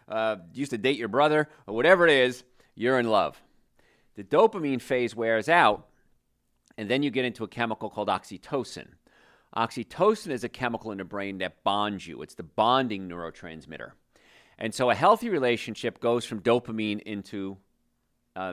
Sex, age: male, 40-59